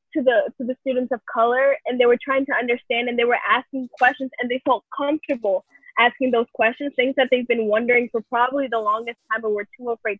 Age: 10-29